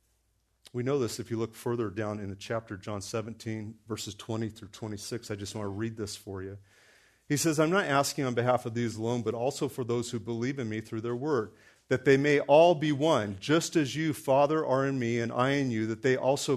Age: 40-59